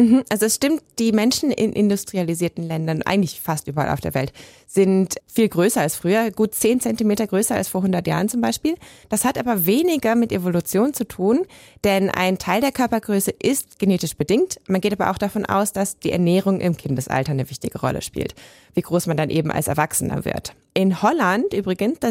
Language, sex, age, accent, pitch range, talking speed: German, female, 20-39, German, 165-220 Hz, 195 wpm